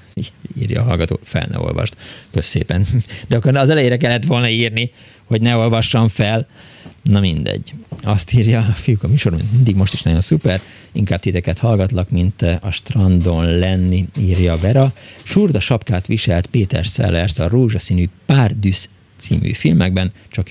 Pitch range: 95-120 Hz